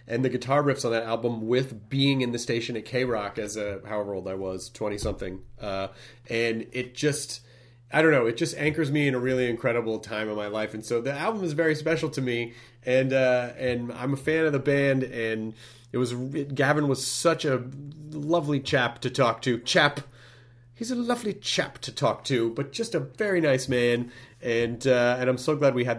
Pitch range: 120-150 Hz